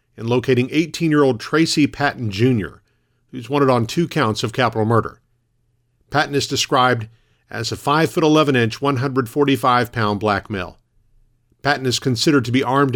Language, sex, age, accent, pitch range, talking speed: English, male, 50-69, American, 115-140 Hz, 135 wpm